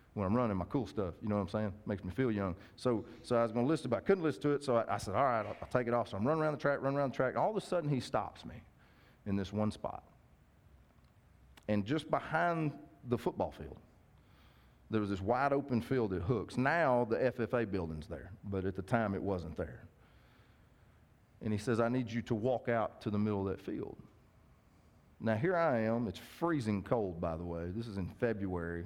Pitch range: 95-120 Hz